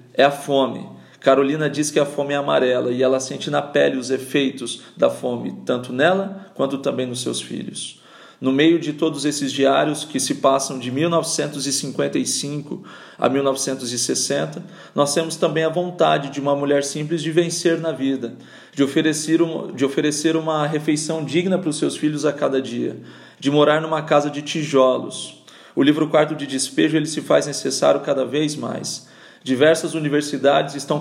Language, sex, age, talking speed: Portuguese, male, 40-59, 165 wpm